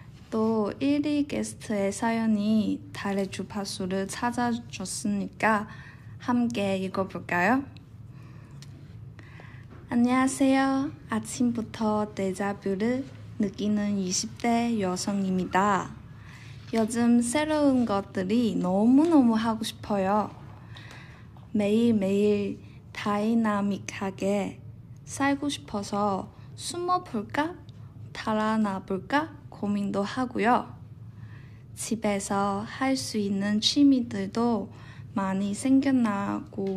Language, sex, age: Korean, female, 20-39